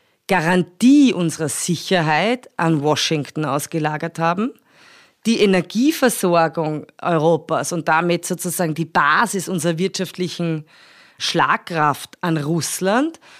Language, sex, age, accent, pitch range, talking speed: German, female, 30-49, German, 170-215 Hz, 90 wpm